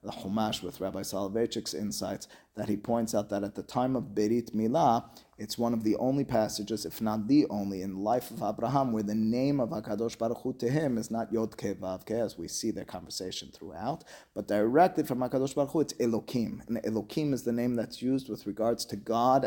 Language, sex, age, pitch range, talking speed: English, male, 30-49, 105-125 Hz, 215 wpm